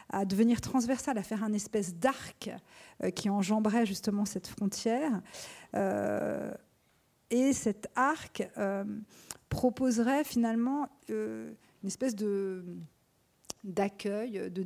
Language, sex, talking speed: French, female, 95 wpm